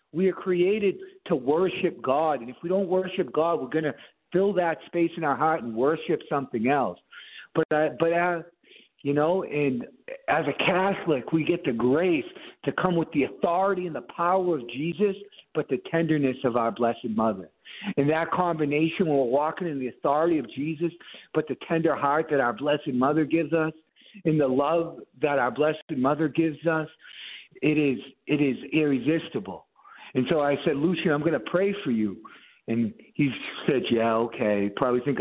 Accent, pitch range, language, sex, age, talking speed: American, 140-165 Hz, English, male, 50-69, 185 wpm